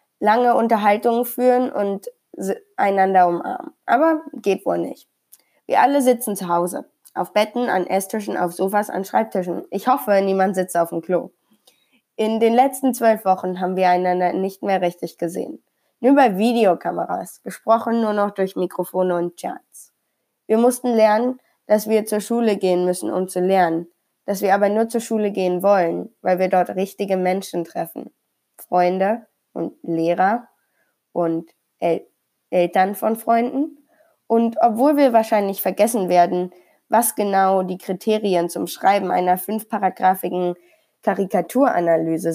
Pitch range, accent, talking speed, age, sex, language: 180-230 Hz, German, 140 wpm, 20-39, female, German